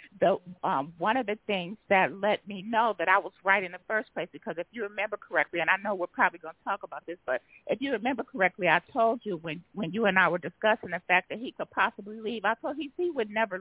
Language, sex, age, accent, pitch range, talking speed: English, female, 50-69, American, 175-225 Hz, 275 wpm